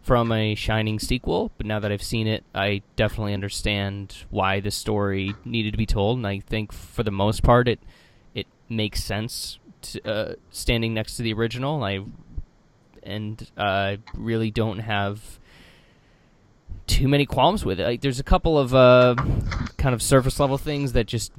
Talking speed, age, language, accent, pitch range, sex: 175 wpm, 20-39, English, American, 100-120 Hz, male